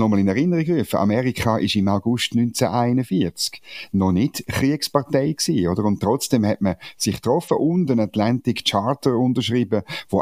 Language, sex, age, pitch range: German, male, 50-69, 95-125 Hz